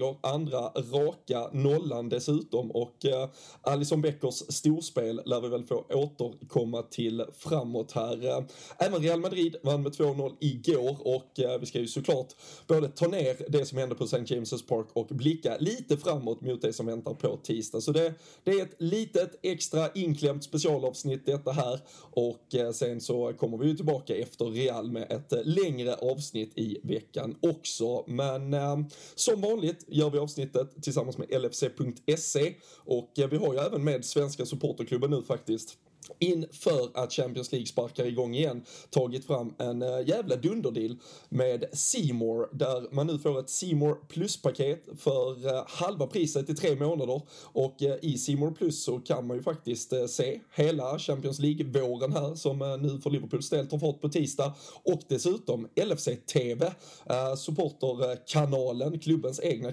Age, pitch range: 20-39, 125-155 Hz